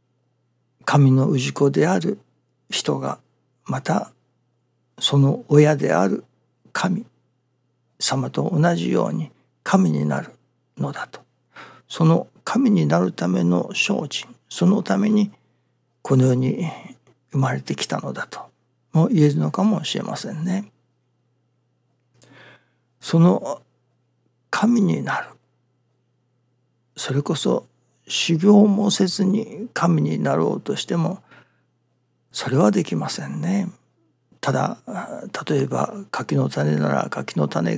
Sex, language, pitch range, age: male, Japanese, 120-170 Hz, 60-79